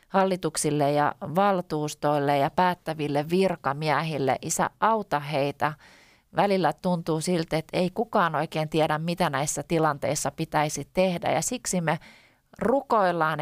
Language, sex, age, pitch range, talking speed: Finnish, female, 30-49, 150-185 Hz, 115 wpm